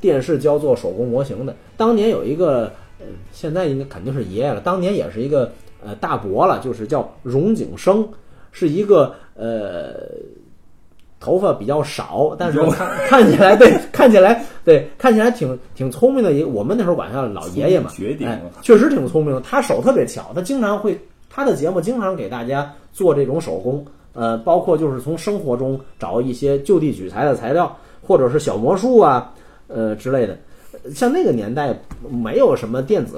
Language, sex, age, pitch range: Chinese, male, 30-49, 115-190 Hz